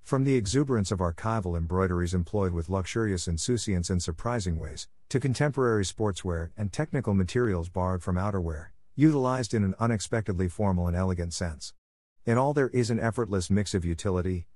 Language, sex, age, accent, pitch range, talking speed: English, male, 50-69, American, 90-115 Hz, 160 wpm